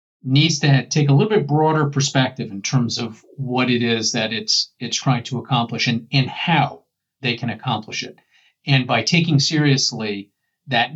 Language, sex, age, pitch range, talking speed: English, male, 40-59, 120-140 Hz, 175 wpm